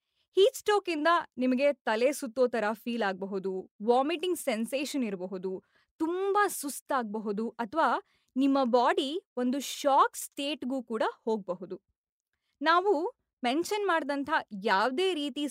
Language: Kannada